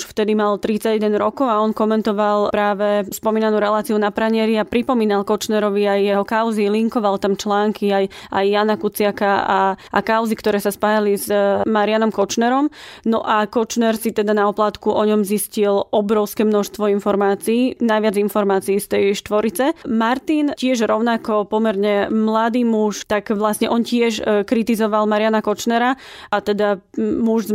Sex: female